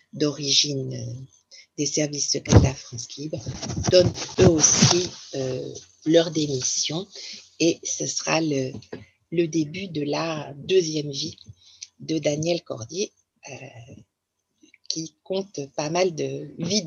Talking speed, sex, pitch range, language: 115 wpm, female, 150-195 Hz, French